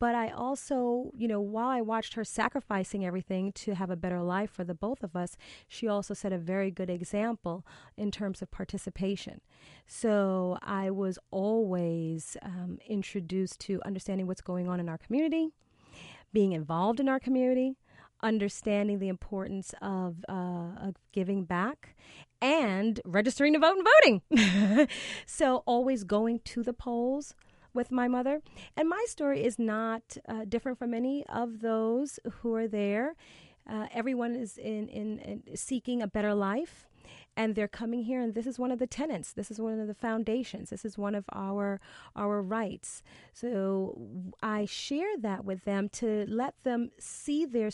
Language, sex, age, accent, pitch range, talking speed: English, female, 30-49, American, 195-245 Hz, 165 wpm